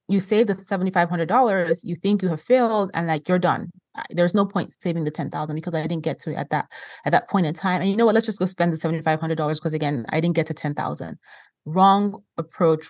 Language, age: English, 30-49